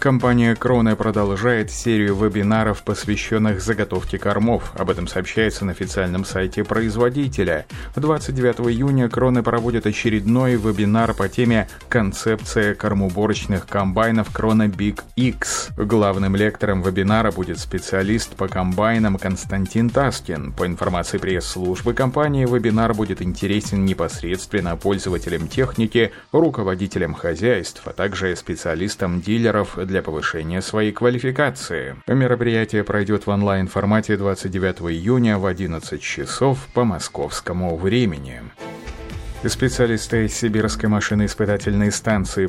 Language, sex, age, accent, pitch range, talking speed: Russian, male, 30-49, native, 95-115 Hz, 105 wpm